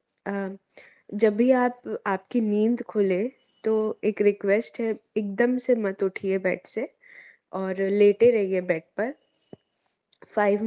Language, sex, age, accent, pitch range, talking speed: Hindi, female, 20-39, native, 190-230 Hz, 130 wpm